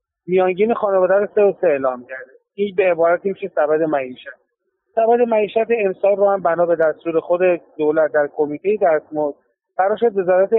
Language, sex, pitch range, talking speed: Persian, male, 150-195 Hz, 170 wpm